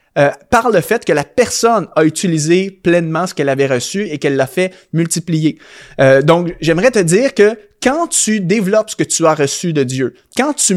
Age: 30-49